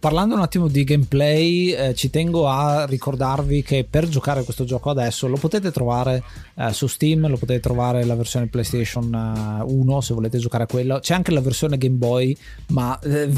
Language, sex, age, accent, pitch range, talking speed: Italian, male, 20-39, native, 120-150 Hz, 195 wpm